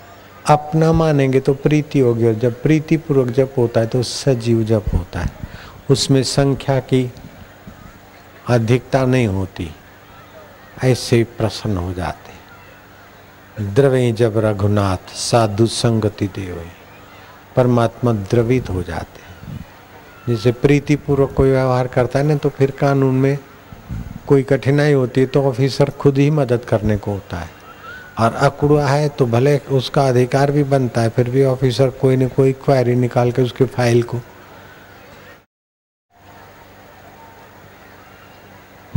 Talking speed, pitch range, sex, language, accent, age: 130 wpm, 100-135 Hz, male, Hindi, native, 50-69